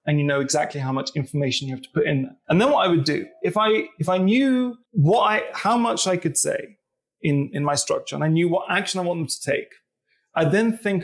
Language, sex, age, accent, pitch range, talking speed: English, male, 30-49, British, 145-195 Hz, 260 wpm